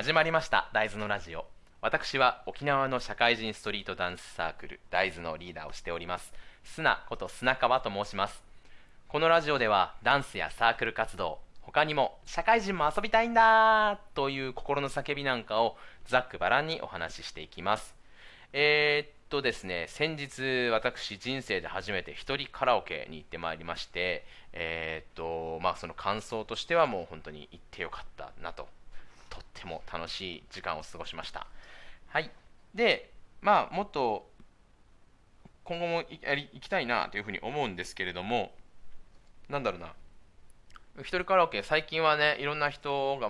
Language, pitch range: Japanese, 100-160 Hz